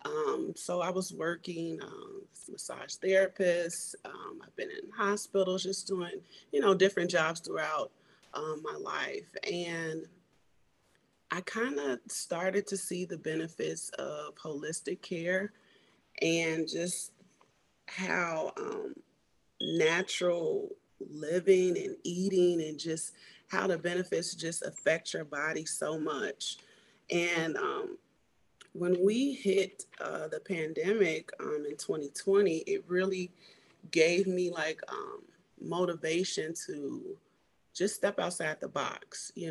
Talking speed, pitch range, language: 120 wpm, 160-205 Hz, English